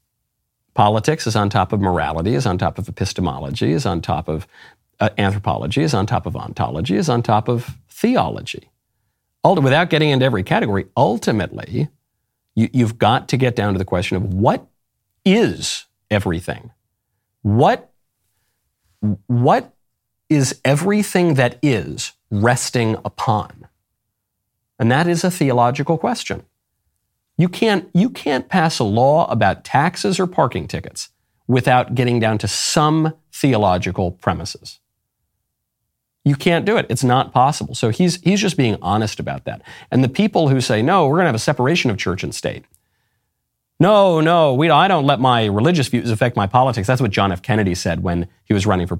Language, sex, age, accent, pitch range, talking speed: English, male, 50-69, American, 105-145 Hz, 160 wpm